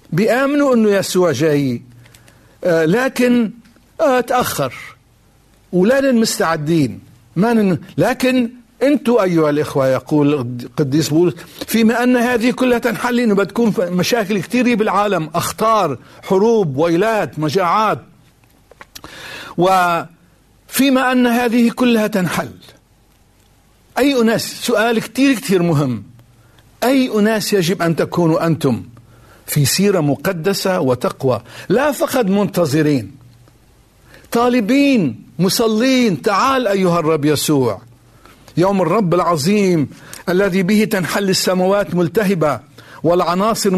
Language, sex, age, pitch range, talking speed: Arabic, male, 60-79, 145-220 Hz, 95 wpm